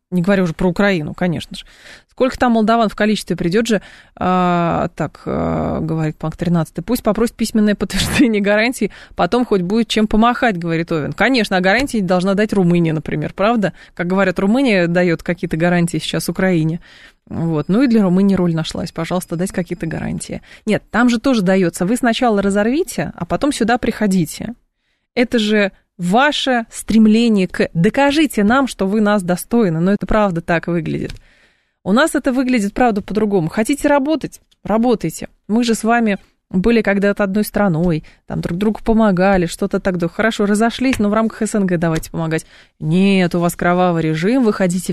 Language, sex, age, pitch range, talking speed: Russian, female, 20-39, 175-220 Hz, 165 wpm